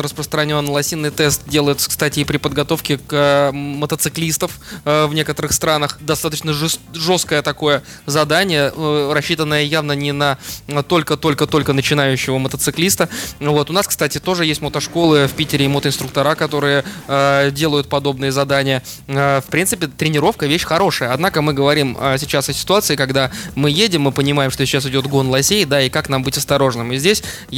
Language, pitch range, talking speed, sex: Russian, 140-160 Hz, 150 wpm, male